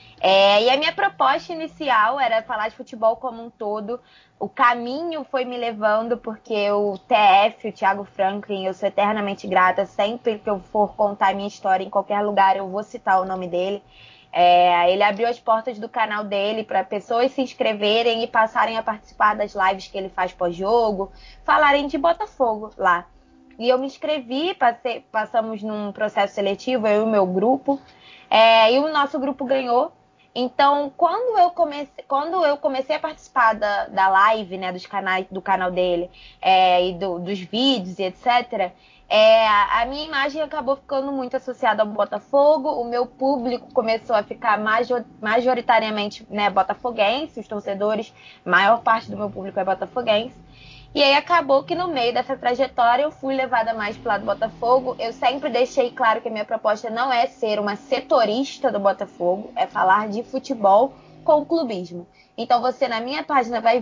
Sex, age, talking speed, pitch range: female, 20-39, 175 wpm, 200-260 Hz